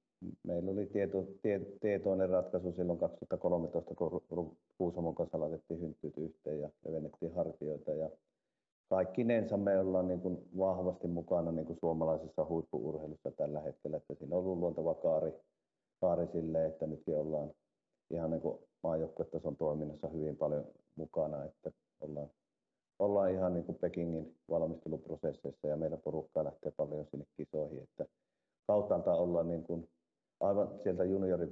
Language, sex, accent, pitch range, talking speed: Finnish, male, native, 80-90 Hz, 135 wpm